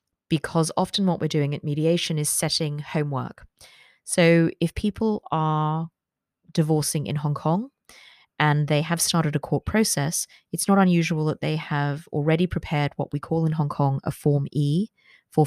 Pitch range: 150-180 Hz